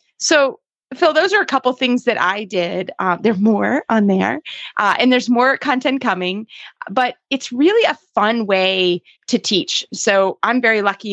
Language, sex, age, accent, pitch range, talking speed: English, female, 20-39, American, 195-255 Hz, 185 wpm